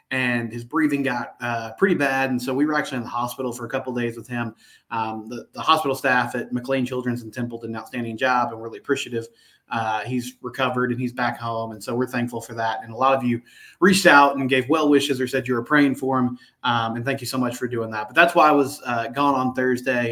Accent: American